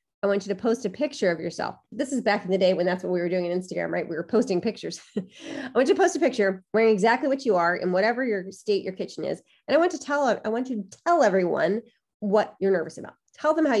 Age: 30-49